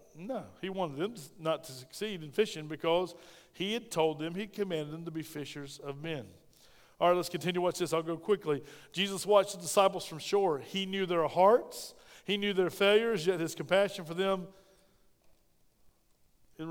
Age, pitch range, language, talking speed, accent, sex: 40-59, 150-190 Hz, English, 185 wpm, American, male